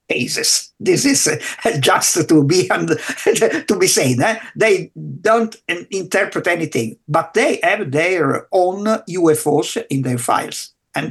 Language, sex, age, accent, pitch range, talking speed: English, male, 50-69, Italian, 155-240 Hz, 125 wpm